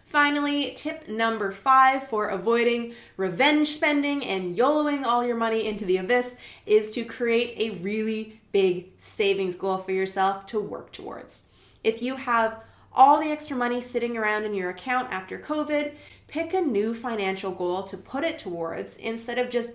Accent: American